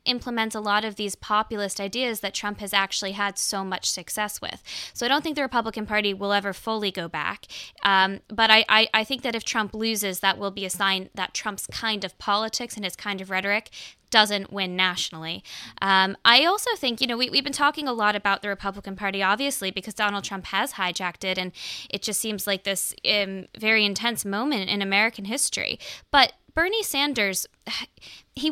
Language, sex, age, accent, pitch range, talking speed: English, female, 10-29, American, 195-225 Hz, 200 wpm